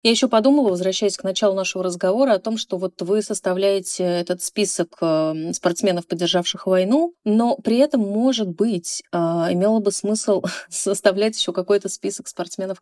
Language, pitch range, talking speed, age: Russian, 165-200 Hz, 150 wpm, 20-39